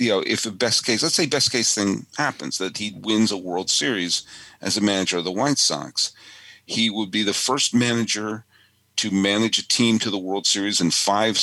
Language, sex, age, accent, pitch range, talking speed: English, male, 50-69, American, 90-115 Hz, 215 wpm